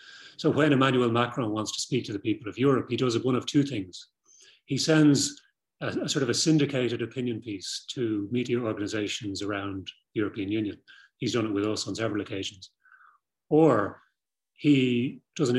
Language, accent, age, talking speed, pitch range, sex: English, British, 30-49, 180 wpm, 105-135 Hz, male